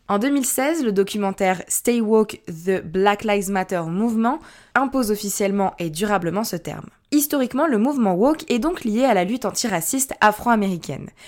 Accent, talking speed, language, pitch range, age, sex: French, 155 wpm, French, 175-230 Hz, 20-39, female